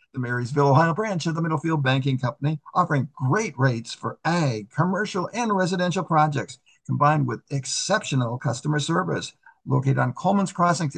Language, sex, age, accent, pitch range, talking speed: English, male, 60-79, American, 140-175 Hz, 150 wpm